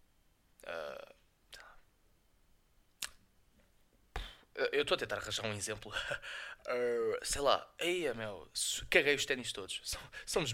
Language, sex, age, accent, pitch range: Portuguese, male, 20-39, Brazilian, 125-155 Hz